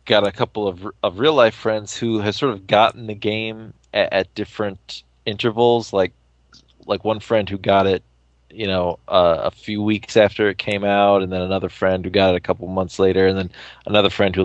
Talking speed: 215 wpm